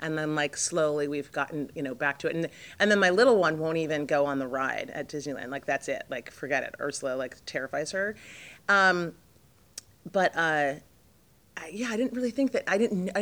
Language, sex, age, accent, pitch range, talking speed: English, female, 30-49, American, 140-175 Hz, 220 wpm